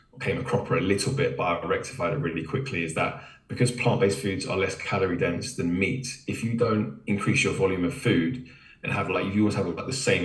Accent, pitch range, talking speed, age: British, 85-130 Hz, 245 wpm, 20-39